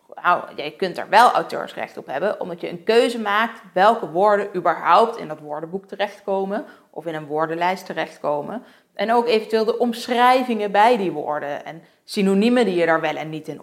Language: Dutch